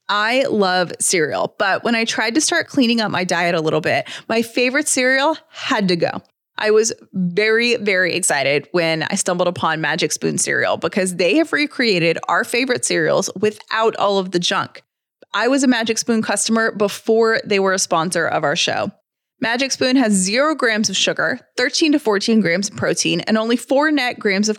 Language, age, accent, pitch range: English, 20-39, American, 195-260 Hz